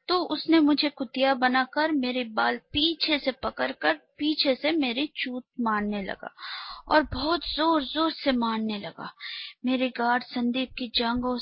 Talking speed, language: 145 wpm, Hindi